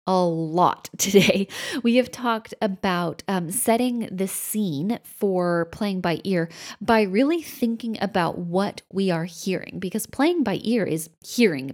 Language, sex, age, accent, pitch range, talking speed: English, female, 20-39, American, 170-210 Hz, 150 wpm